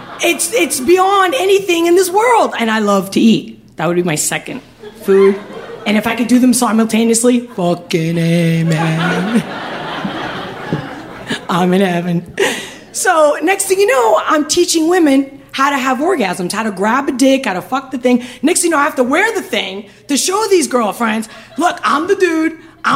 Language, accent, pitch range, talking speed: English, American, 230-345 Hz, 185 wpm